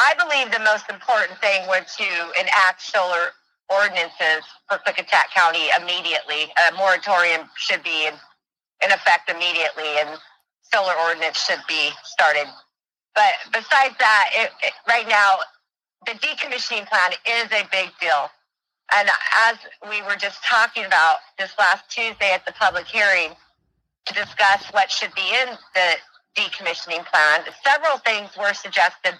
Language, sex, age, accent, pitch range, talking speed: English, female, 40-59, American, 185-245 Hz, 140 wpm